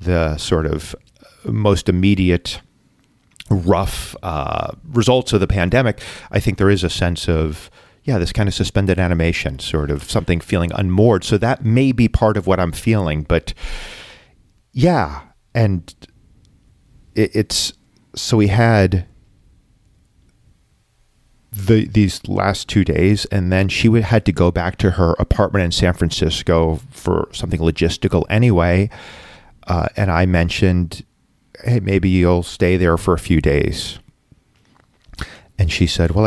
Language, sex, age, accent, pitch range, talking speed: English, male, 40-59, American, 85-110 Hz, 140 wpm